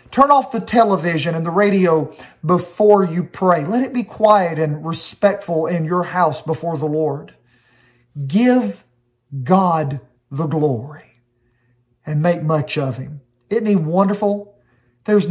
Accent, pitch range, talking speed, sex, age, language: American, 150-210 Hz, 135 wpm, male, 40-59, English